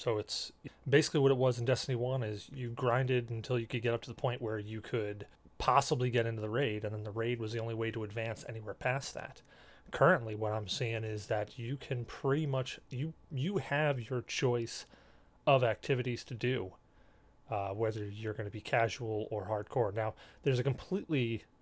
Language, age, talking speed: English, 30-49, 200 wpm